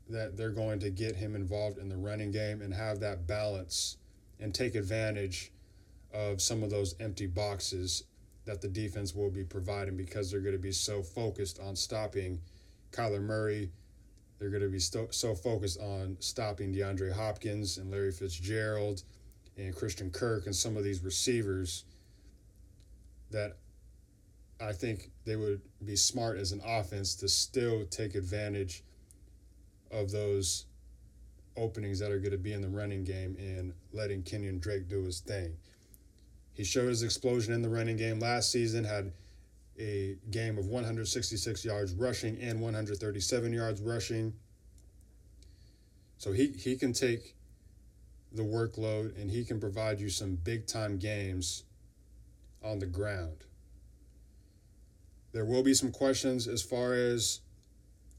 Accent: American